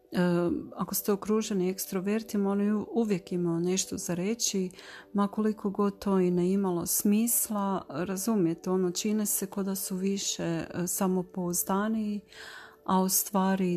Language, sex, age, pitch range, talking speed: Croatian, female, 40-59, 175-205 Hz, 130 wpm